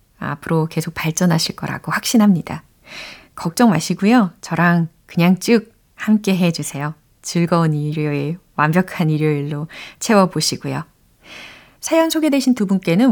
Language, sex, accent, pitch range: Korean, female, native, 170-255 Hz